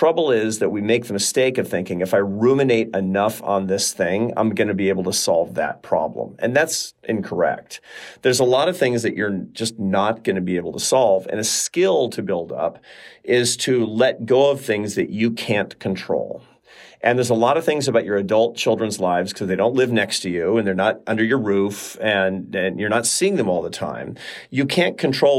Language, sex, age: English, male, 40-59